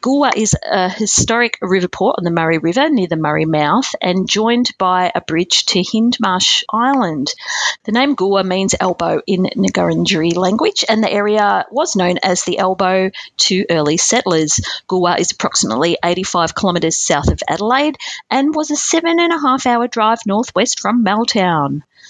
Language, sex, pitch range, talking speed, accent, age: English, female, 180-245 Hz, 165 wpm, Australian, 40-59